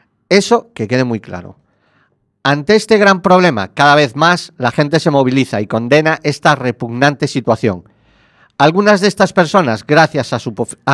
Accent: Spanish